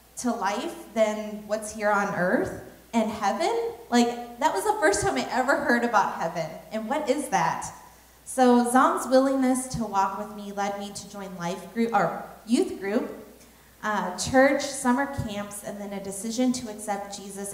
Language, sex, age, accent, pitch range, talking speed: English, female, 30-49, American, 195-260 Hz, 175 wpm